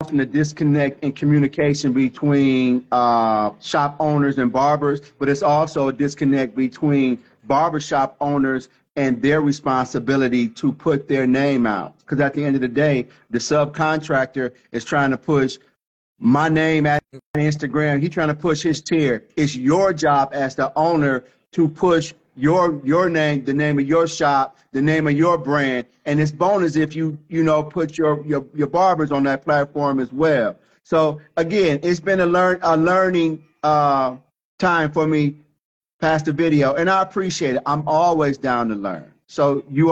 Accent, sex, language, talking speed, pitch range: American, male, English, 170 wpm, 135-155 Hz